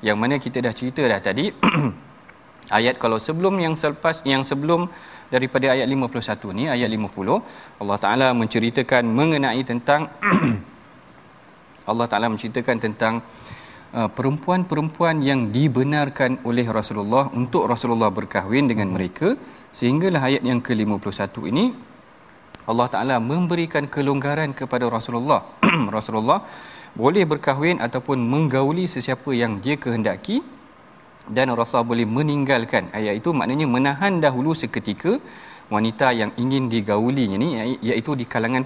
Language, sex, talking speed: Malayalam, male, 120 wpm